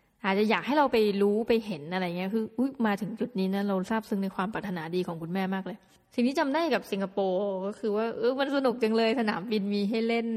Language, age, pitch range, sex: Thai, 20-39, 190-230 Hz, female